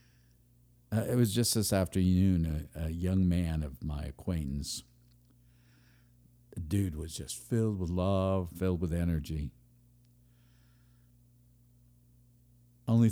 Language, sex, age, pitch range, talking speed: English, male, 60-79, 85-120 Hz, 105 wpm